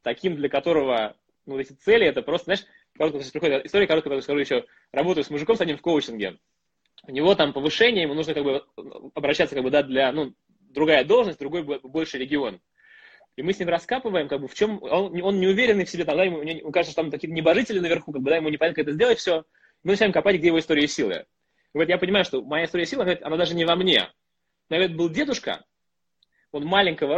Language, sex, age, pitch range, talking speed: Russian, male, 20-39, 150-195 Hz, 225 wpm